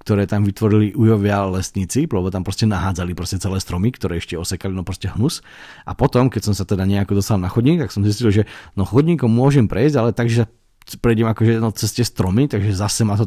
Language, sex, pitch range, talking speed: Slovak, male, 95-115 Hz, 215 wpm